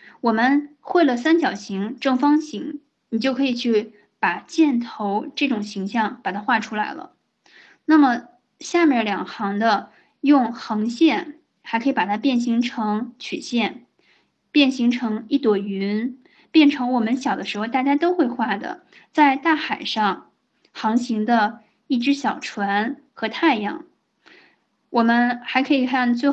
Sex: female